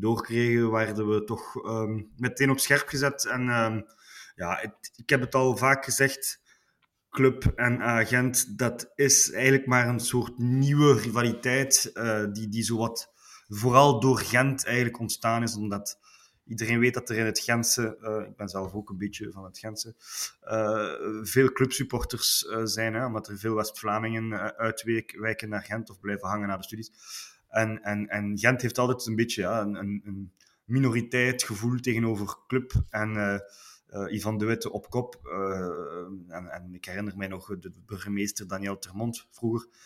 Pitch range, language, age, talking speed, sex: 105-120 Hz, Dutch, 20-39, 175 wpm, male